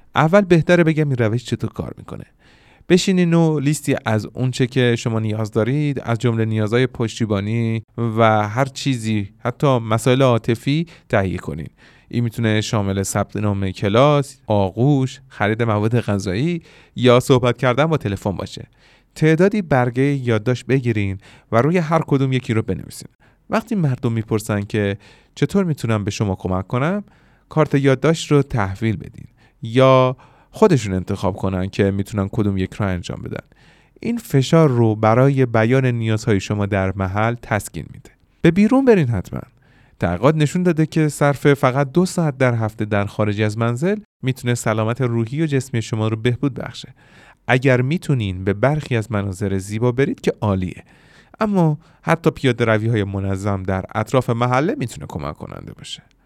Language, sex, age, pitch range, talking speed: Persian, male, 30-49, 110-145 Hz, 155 wpm